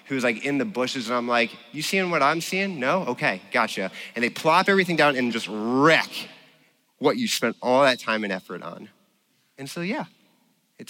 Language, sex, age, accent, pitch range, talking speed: English, male, 30-49, American, 95-145 Hz, 205 wpm